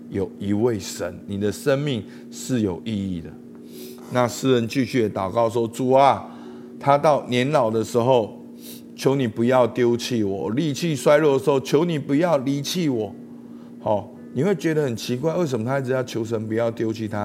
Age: 50-69